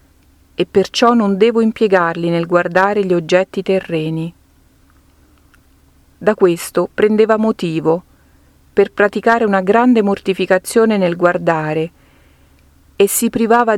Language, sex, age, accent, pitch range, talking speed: Italian, female, 40-59, native, 165-205 Hz, 105 wpm